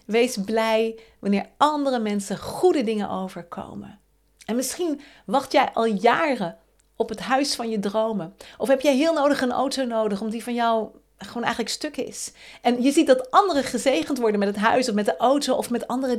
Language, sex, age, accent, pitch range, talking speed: Dutch, female, 40-59, Dutch, 205-275 Hz, 195 wpm